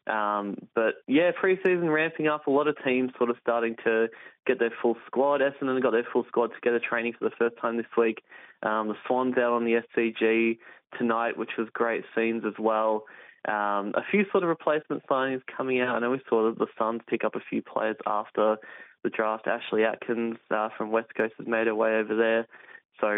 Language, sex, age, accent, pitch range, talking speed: English, male, 20-39, Australian, 110-135 Hz, 210 wpm